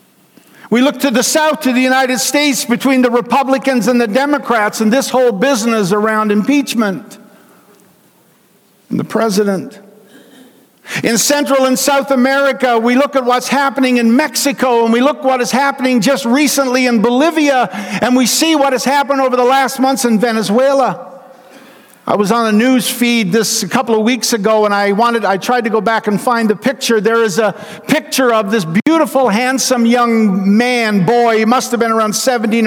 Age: 60-79